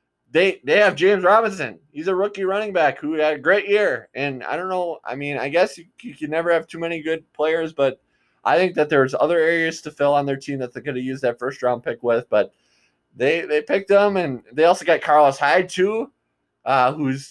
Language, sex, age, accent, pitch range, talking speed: English, male, 20-39, American, 125-165 Hz, 230 wpm